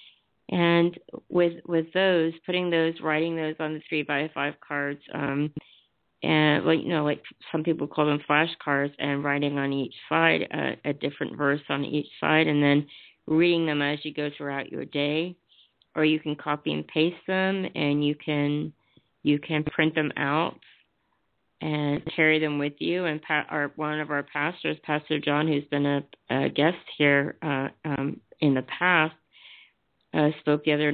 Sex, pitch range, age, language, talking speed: female, 140-155 Hz, 50-69, English, 175 wpm